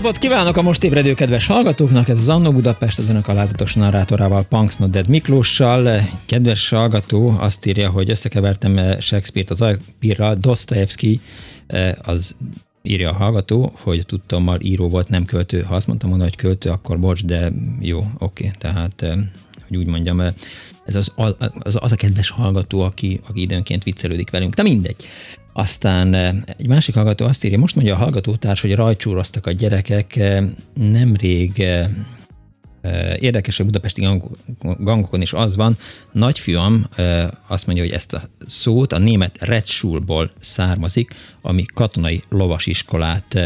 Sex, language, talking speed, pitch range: male, Hungarian, 140 wpm, 90-115 Hz